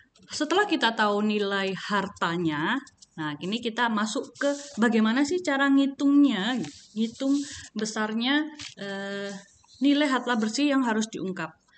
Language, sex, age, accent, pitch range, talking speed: Indonesian, female, 20-39, native, 195-270 Hz, 115 wpm